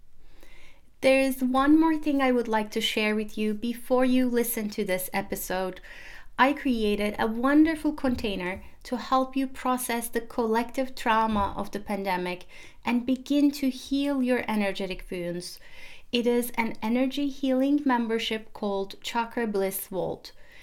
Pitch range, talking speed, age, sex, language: 205-260 Hz, 145 wpm, 30-49, female, English